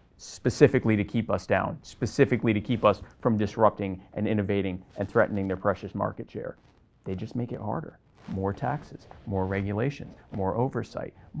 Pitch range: 105-135 Hz